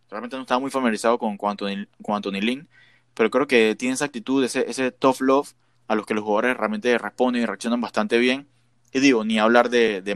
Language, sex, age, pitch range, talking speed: Spanish, male, 20-39, 110-125 Hz, 220 wpm